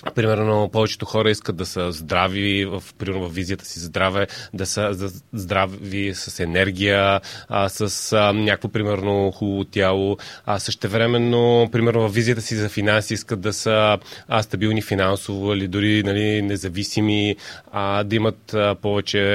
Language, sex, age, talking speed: Bulgarian, male, 30-49, 125 wpm